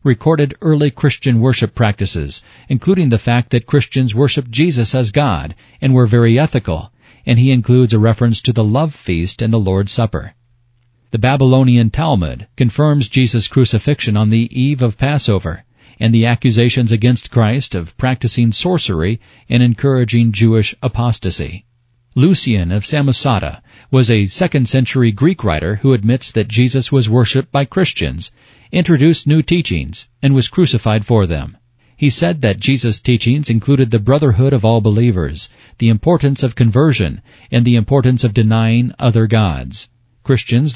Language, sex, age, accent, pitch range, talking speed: English, male, 40-59, American, 110-130 Hz, 150 wpm